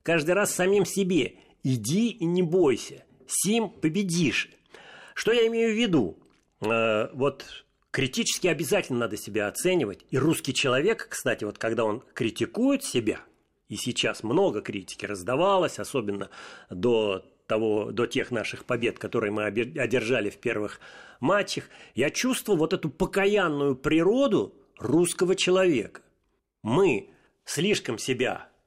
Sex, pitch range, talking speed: male, 125-205 Hz, 125 wpm